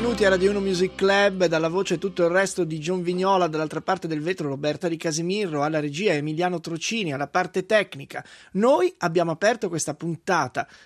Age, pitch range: 30-49, 170-210 Hz